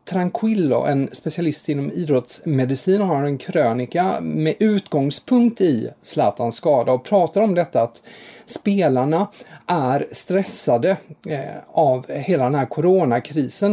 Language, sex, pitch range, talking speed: English, male, 125-165 Hz, 120 wpm